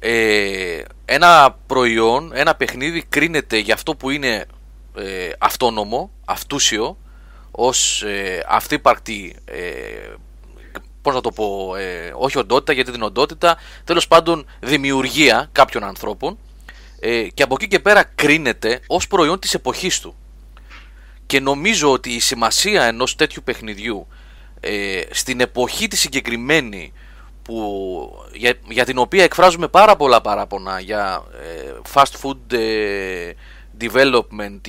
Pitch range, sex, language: 105-140 Hz, male, Greek